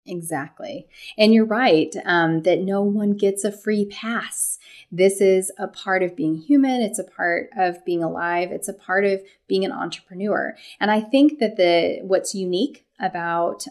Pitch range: 175-215 Hz